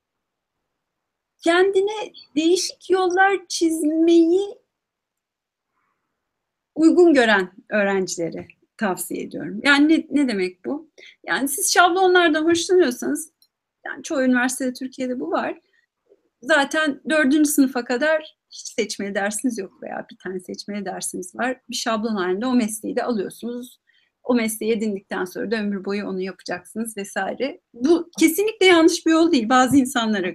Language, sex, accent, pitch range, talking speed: Turkish, female, native, 235-340 Hz, 125 wpm